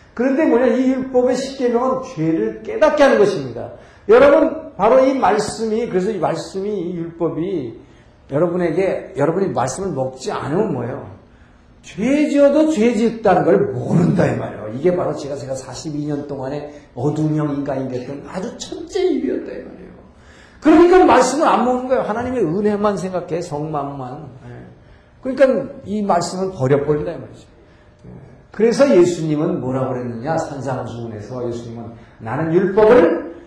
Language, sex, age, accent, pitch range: Korean, male, 50-69, native, 140-215 Hz